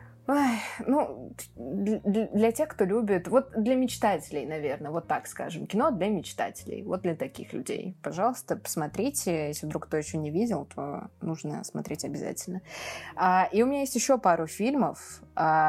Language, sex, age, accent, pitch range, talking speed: Russian, female, 20-39, native, 155-190 Hz, 145 wpm